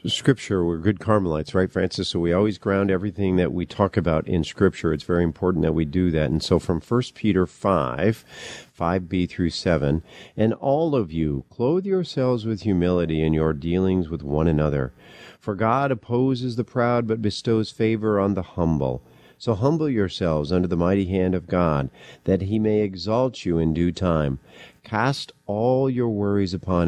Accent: American